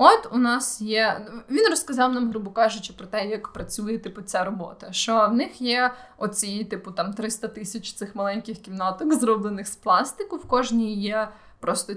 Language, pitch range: Ukrainian, 200-245 Hz